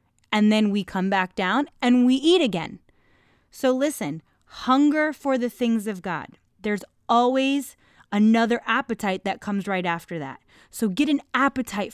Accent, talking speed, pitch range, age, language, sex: American, 155 wpm, 180-245 Hz, 20-39, English, female